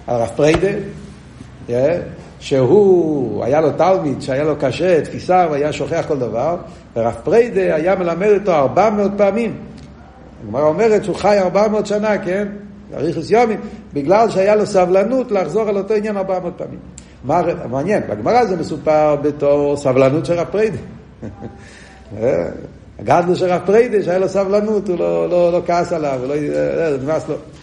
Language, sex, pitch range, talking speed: Hebrew, male, 145-200 Hz, 135 wpm